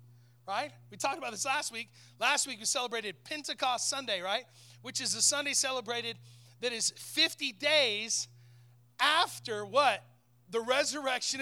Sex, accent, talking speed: male, American, 140 wpm